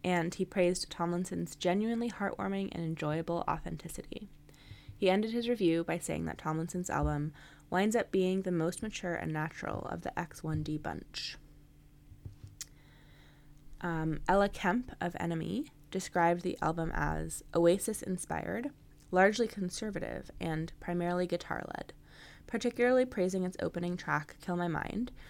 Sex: female